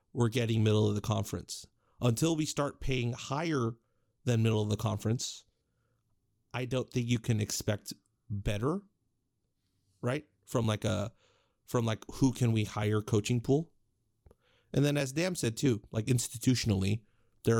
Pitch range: 110-135 Hz